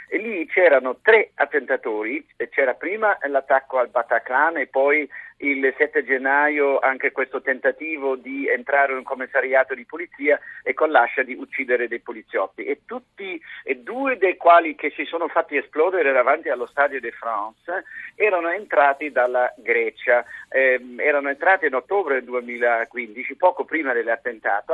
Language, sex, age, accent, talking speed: Italian, male, 50-69, native, 150 wpm